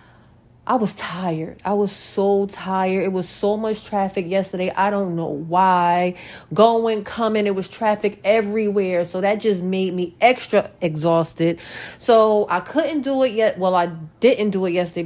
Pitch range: 175-215 Hz